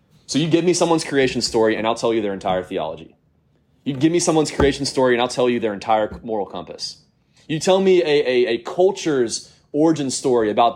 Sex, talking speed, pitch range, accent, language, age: male, 210 wpm, 105-140 Hz, American, English, 20-39